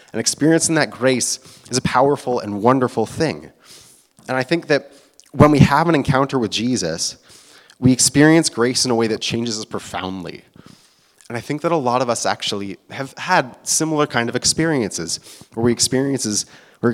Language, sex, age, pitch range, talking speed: English, male, 30-49, 105-130 Hz, 175 wpm